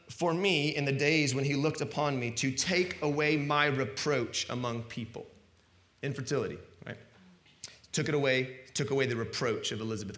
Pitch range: 120-165 Hz